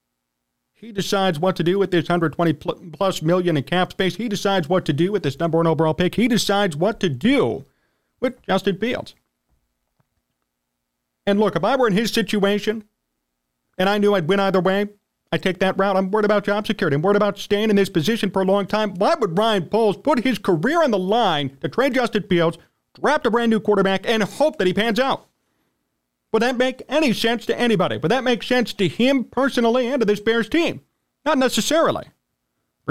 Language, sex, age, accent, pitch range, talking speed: English, male, 40-59, American, 165-220 Hz, 205 wpm